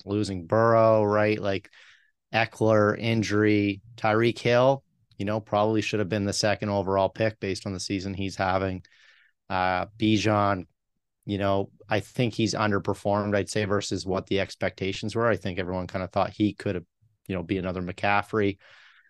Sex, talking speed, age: male, 165 wpm, 30-49